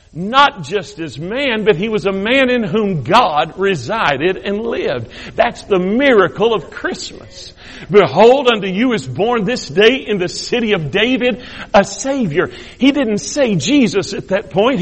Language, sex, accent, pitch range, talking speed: English, male, American, 185-265 Hz, 165 wpm